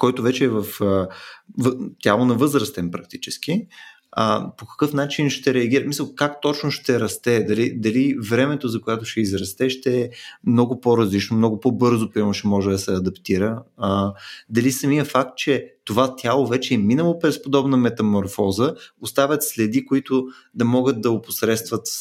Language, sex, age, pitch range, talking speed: Bulgarian, male, 20-39, 110-150 Hz, 165 wpm